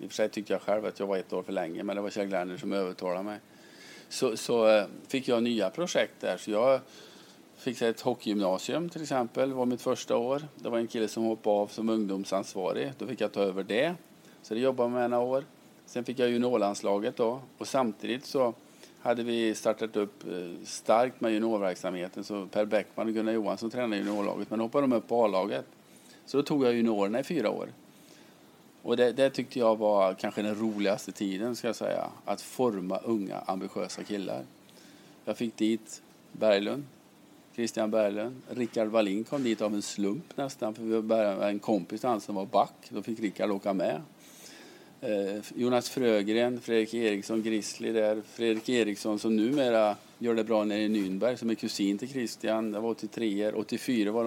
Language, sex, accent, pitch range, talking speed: English, male, Norwegian, 105-120 Hz, 190 wpm